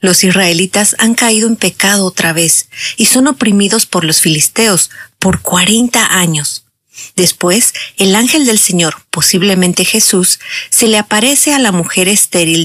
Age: 40-59